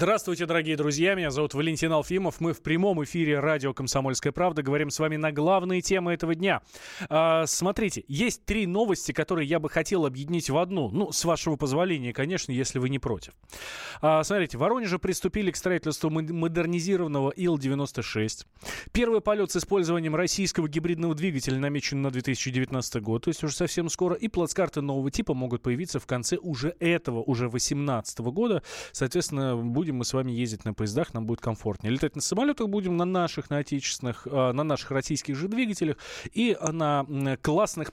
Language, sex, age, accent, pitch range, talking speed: Russian, male, 20-39, native, 130-175 Hz, 170 wpm